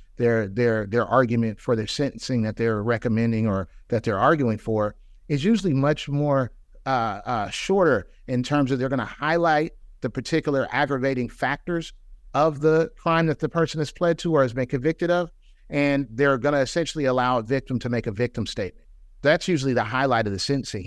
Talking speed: 195 wpm